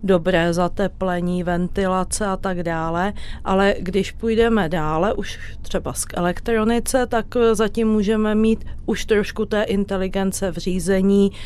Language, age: Czech, 30-49